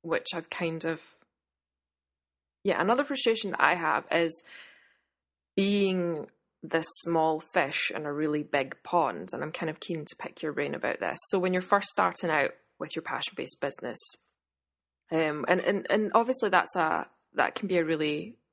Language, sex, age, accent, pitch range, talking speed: English, female, 20-39, British, 160-195 Hz, 175 wpm